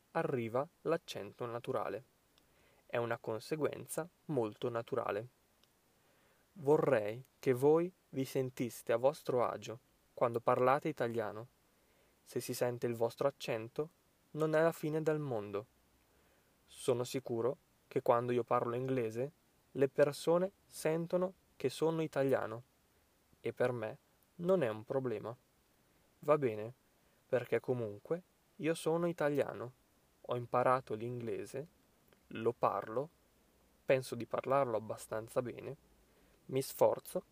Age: 20-39